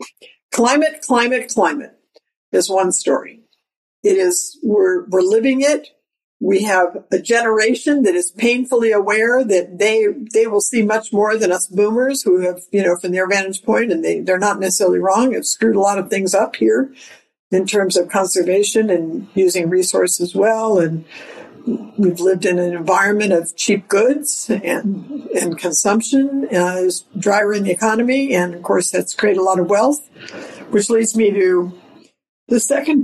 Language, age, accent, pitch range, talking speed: English, 60-79, American, 185-250 Hz, 170 wpm